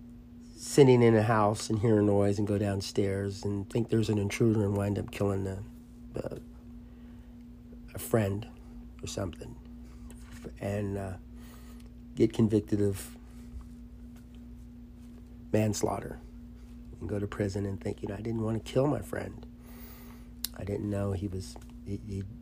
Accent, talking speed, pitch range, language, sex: American, 145 wpm, 95-120 Hz, English, male